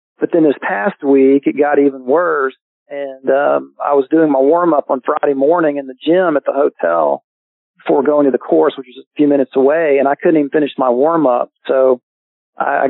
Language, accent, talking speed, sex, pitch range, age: English, American, 220 wpm, male, 135-150 Hz, 40-59